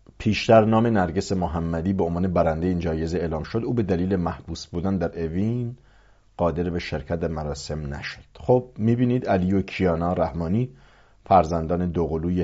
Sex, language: male, English